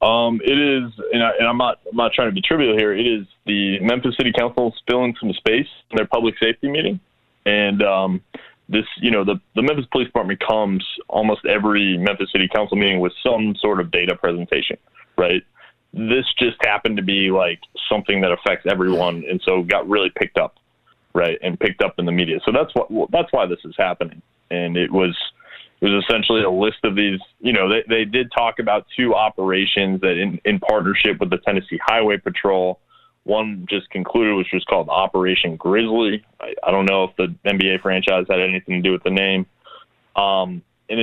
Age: 20-39